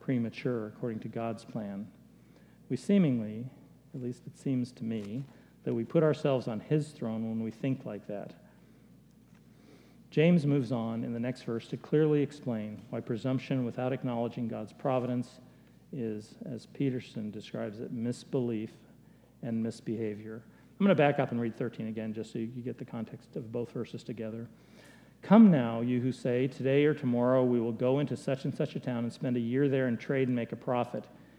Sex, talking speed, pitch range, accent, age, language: male, 185 wpm, 115-140 Hz, American, 50-69, English